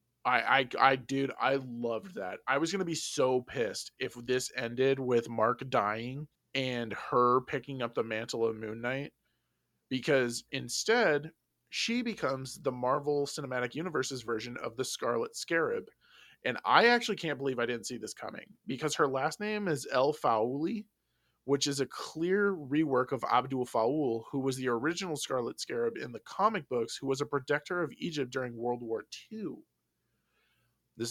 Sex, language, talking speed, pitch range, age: male, English, 170 wpm, 115-150 Hz, 20-39